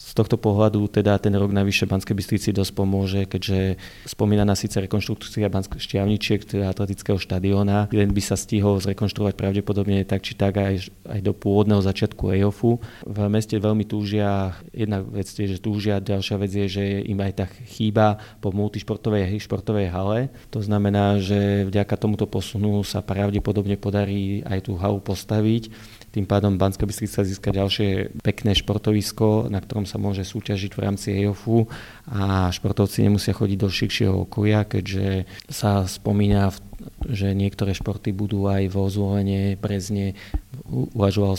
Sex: male